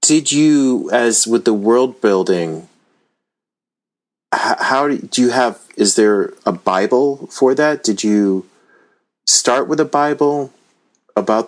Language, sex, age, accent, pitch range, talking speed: English, male, 30-49, American, 85-105 Hz, 125 wpm